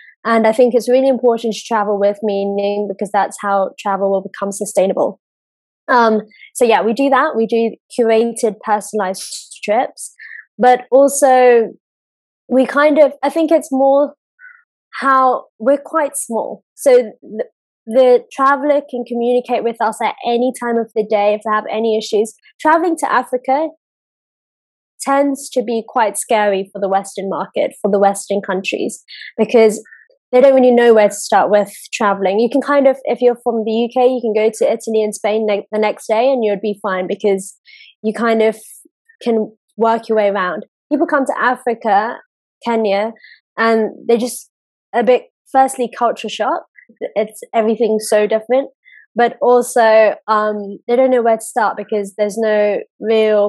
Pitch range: 210-260 Hz